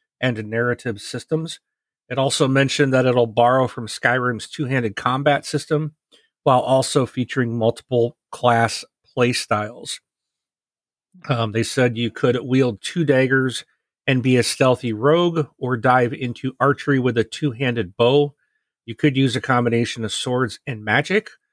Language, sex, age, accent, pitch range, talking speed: English, male, 40-59, American, 115-135 Hz, 135 wpm